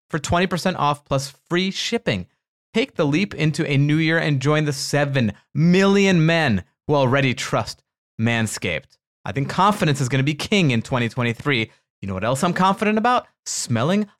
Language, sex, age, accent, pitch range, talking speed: English, male, 30-49, American, 125-175 Hz, 170 wpm